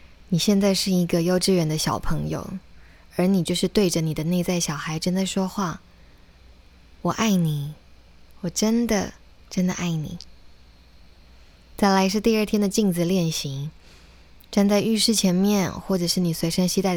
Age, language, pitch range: 20-39, Chinese, 150-200 Hz